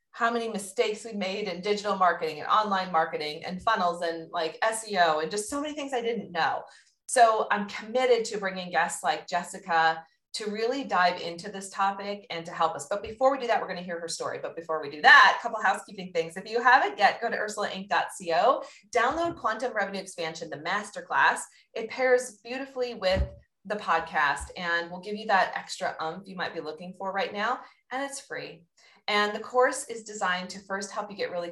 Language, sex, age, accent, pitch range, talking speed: English, female, 30-49, American, 175-240 Hz, 210 wpm